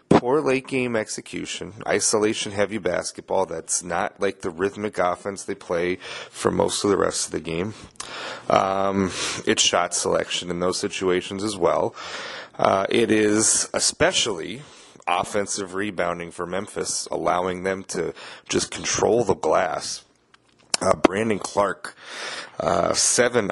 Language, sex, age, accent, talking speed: English, male, 30-49, American, 130 wpm